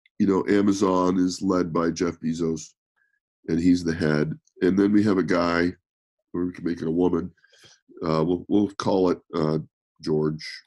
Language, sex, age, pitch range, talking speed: English, male, 50-69, 80-105 Hz, 180 wpm